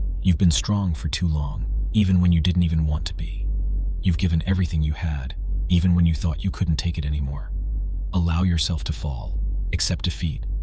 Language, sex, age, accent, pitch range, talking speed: English, male, 40-59, American, 80-90 Hz, 190 wpm